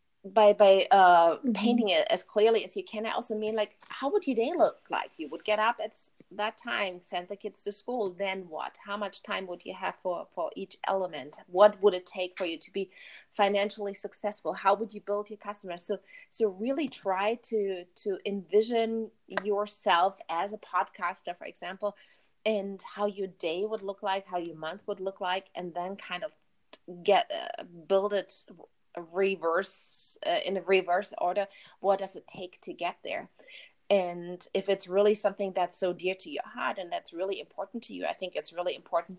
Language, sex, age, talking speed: English, female, 30-49, 200 wpm